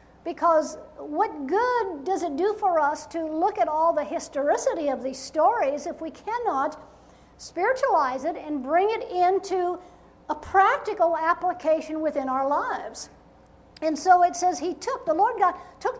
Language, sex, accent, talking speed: English, female, American, 160 wpm